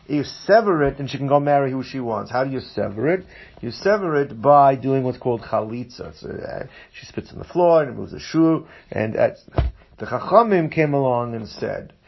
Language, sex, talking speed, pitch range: English, male, 220 wpm, 120-145 Hz